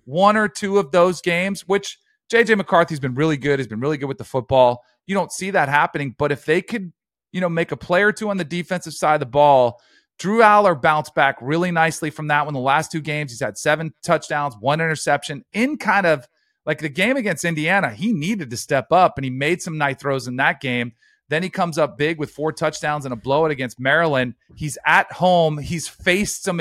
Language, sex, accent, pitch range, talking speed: English, male, American, 145-185 Hz, 230 wpm